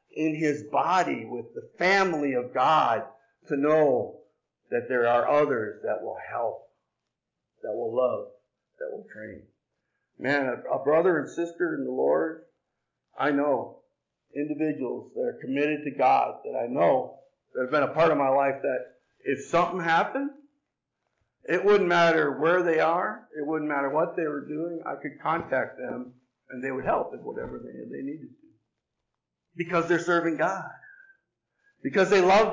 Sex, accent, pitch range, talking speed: male, American, 145-205 Hz, 165 wpm